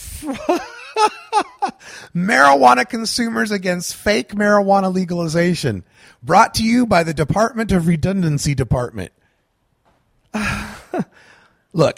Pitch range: 135-230 Hz